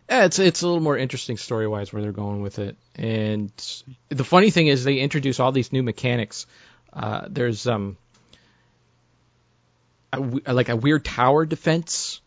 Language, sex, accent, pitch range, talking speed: English, male, American, 115-140 Hz, 165 wpm